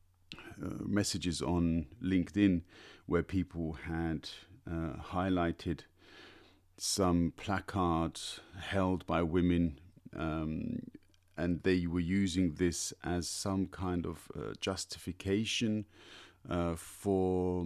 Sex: male